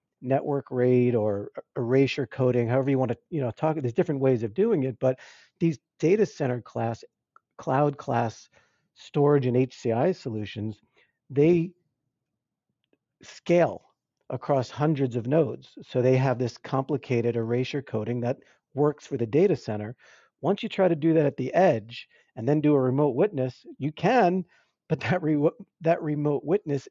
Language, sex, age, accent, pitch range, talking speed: English, male, 50-69, American, 125-160 Hz, 160 wpm